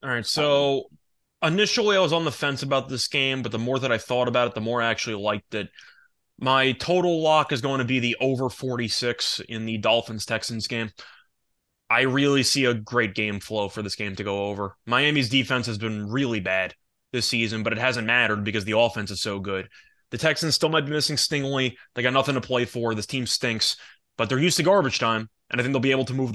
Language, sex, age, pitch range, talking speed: English, male, 20-39, 110-145 Hz, 230 wpm